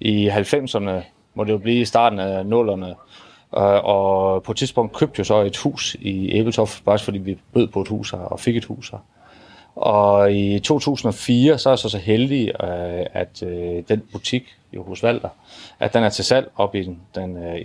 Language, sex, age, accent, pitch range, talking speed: Danish, male, 30-49, native, 95-115 Hz, 180 wpm